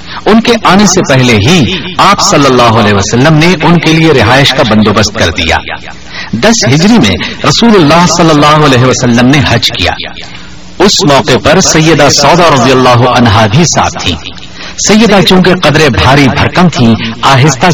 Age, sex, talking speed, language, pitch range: 50-69, male, 165 wpm, Urdu, 115-170 Hz